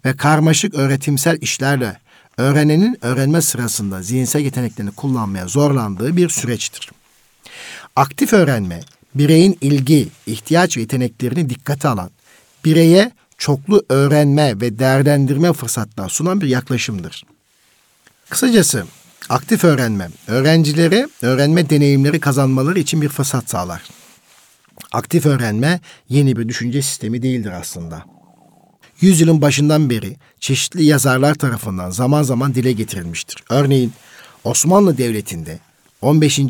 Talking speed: 105 wpm